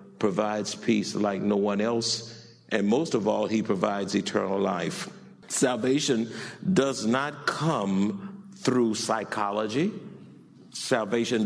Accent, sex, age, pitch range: American, male, 50-69, 130-170 Hz